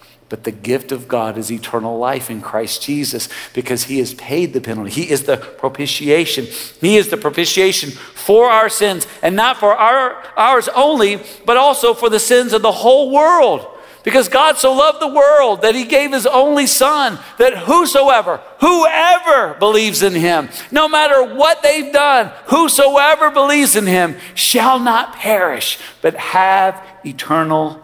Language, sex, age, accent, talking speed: English, male, 50-69, American, 165 wpm